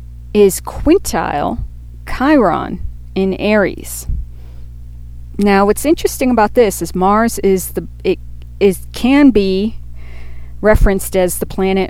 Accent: American